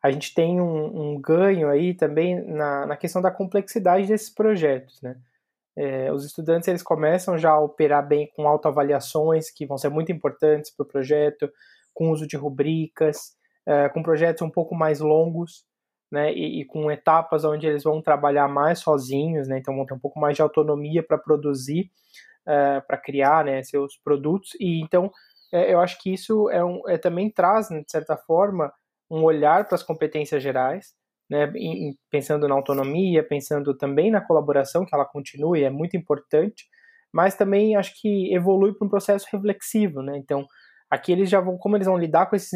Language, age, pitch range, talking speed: Portuguese, 20-39, 145-185 Hz, 185 wpm